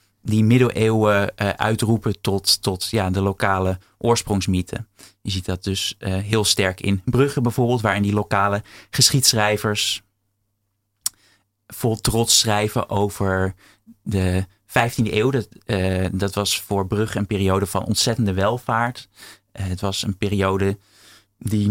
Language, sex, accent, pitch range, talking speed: Dutch, male, Dutch, 100-115 Hz, 125 wpm